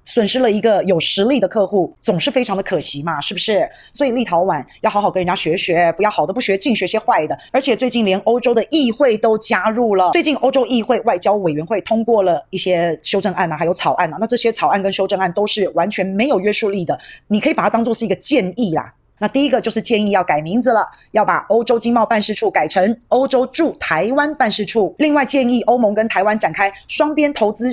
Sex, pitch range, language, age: female, 185-235 Hz, Chinese, 20-39